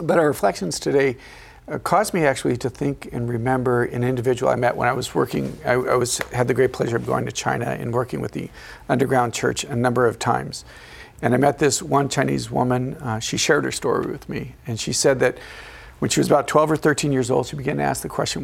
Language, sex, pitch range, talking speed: English, male, 115-140 Hz, 240 wpm